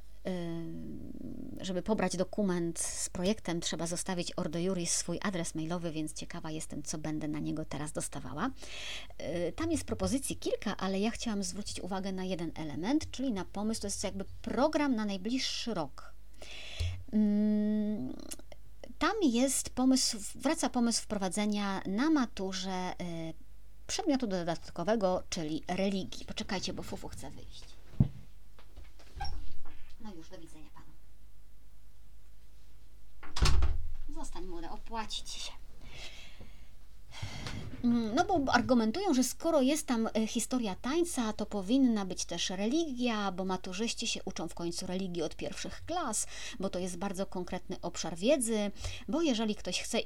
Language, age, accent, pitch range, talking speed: Polish, 40-59, native, 160-235 Hz, 125 wpm